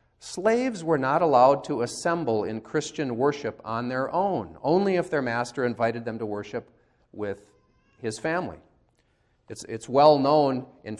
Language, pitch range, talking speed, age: English, 115-165 Hz, 155 wpm, 40-59